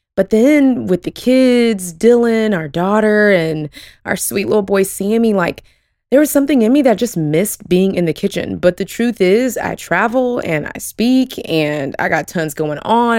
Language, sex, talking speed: English, female, 190 wpm